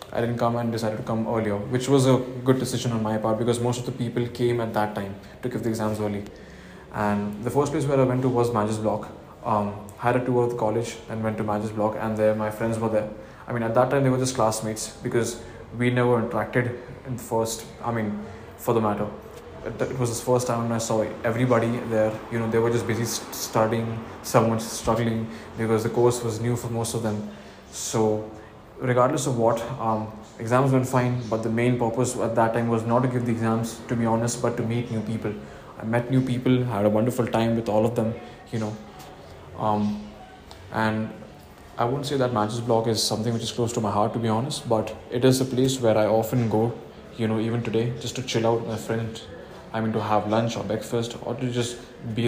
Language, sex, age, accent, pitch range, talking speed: English, male, 20-39, Indian, 110-120 Hz, 230 wpm